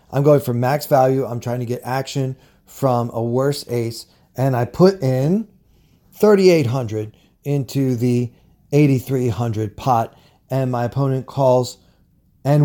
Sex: male